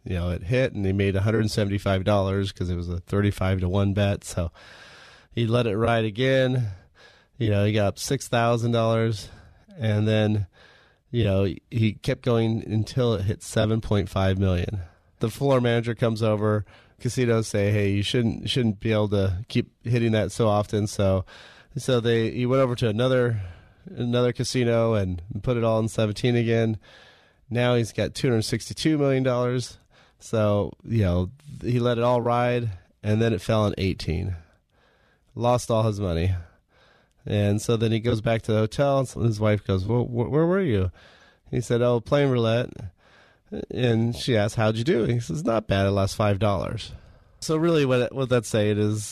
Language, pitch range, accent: English, 100-120 Hz, American